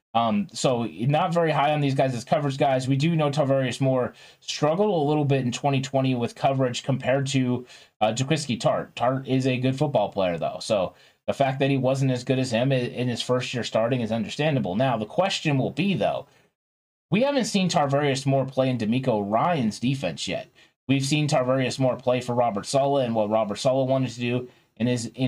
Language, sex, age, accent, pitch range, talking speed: English, male, 30-49, American, 125-150 Hz, 210 wpm